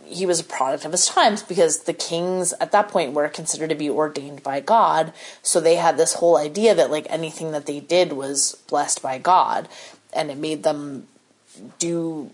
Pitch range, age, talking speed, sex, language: 145-175 Hz, 30-49, 200 wpm, female, English